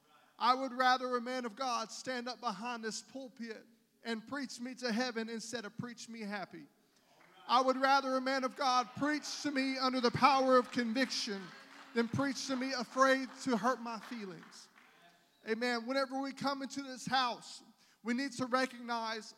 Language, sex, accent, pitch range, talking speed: English, male, American, 230-260 Hz, 175 wpm